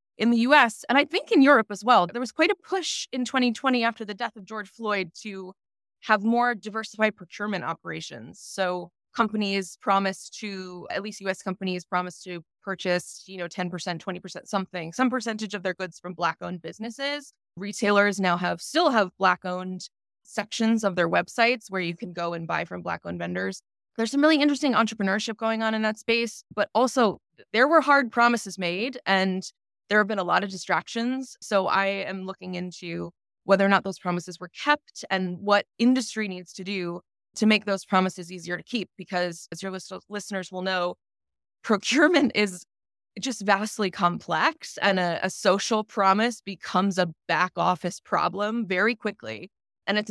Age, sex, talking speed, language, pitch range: 20-39, female, 175 wpm, English, 180-225 Hz